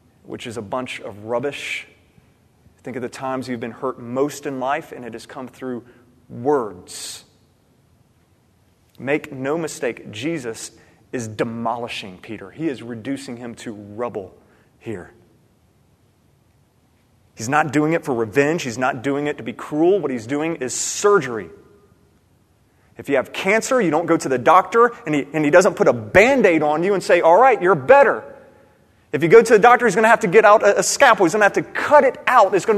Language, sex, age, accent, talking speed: English, male, 30-49, American, 195 wpm